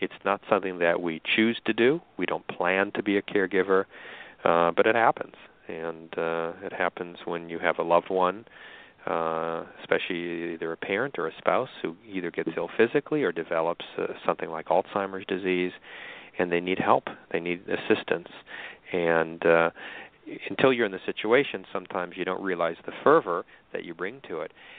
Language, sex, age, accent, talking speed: English, male, 40-59, American, 180 wpm